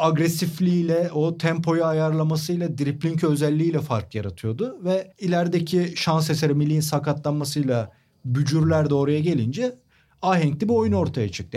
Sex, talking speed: male, 120 wpm